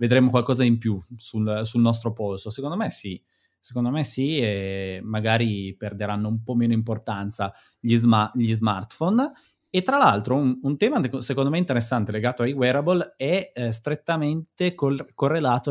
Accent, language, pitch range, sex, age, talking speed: native, Italian, 105-130 Hz, male, 20-39, 160 wpm